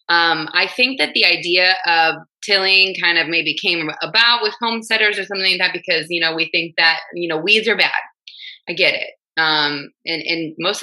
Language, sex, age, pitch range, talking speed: English, female, 20-39, 165-215 Hz, 205 wpm